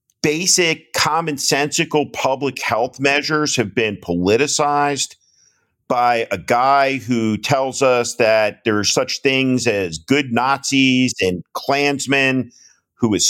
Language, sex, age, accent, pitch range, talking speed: English, male, 50-69, American, 120-145 Hz, 115 wpm